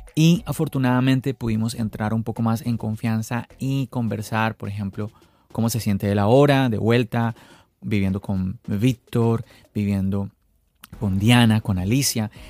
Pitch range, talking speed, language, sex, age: 110-135 Hz, 140 wpm, Spanish, male, 30-49